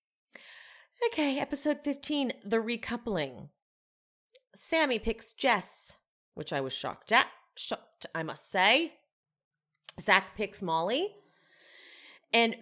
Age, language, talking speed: 30-49, English, 100 wpm